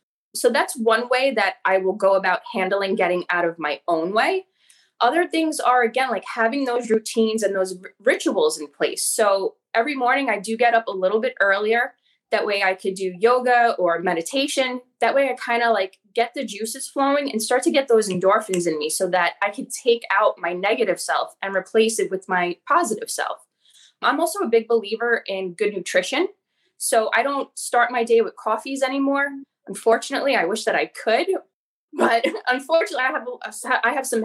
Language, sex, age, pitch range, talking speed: English, female, 20-39, 195-265 Hz, 200 wpm